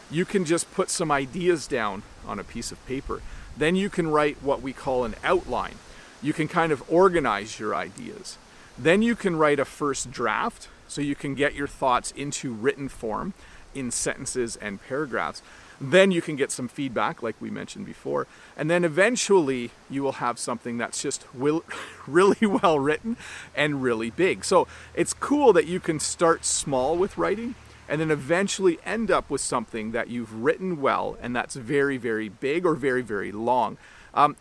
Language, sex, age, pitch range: English, male, 40-59, 125-170 Hz